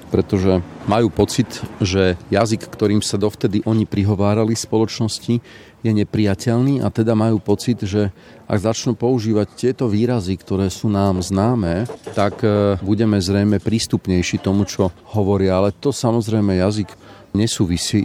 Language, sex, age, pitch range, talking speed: Slovak, male, 40-59, 90-110 Hz, 135 wpm